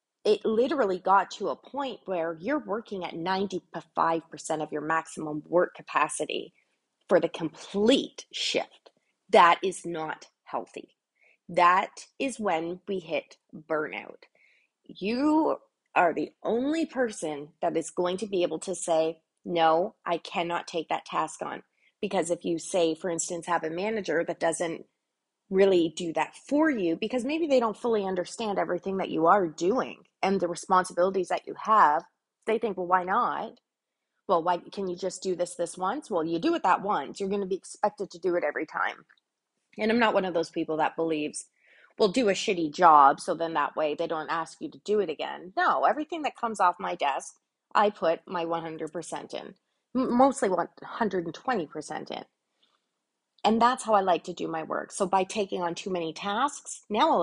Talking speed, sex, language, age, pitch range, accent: 180 wpm, female, English, 30-49, 165-215 Hz, American